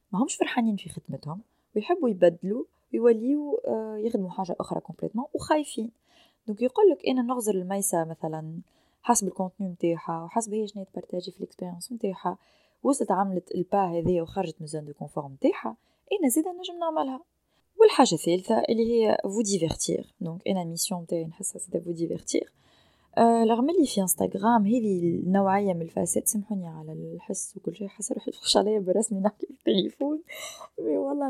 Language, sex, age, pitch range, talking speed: Arabic, female, 20-39, 170-230 Hz, 140 wpm